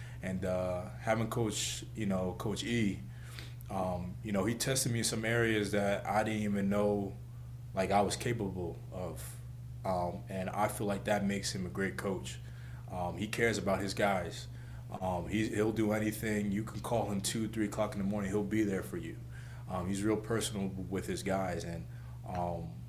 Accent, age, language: American, 20-39, English